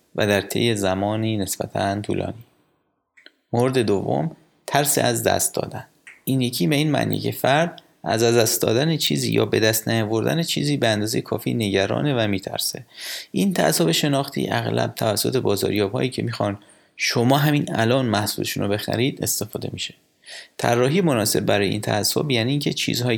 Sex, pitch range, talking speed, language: male, 100-135 Hz, 150 wpm, Persian